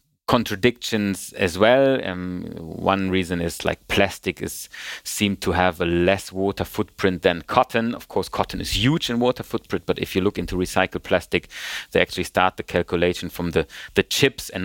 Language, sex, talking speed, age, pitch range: English, male, 180 wpm, 30-49, 95-115 Hz